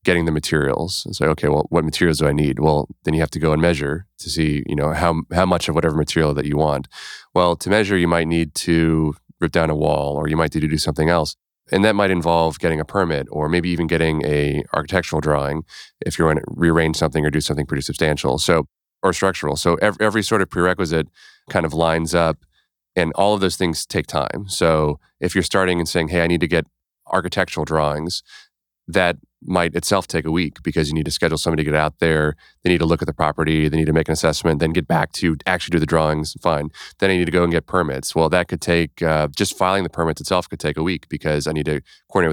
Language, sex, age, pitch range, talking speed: English, male, 30-49, 75-85 Hz, 250 wpm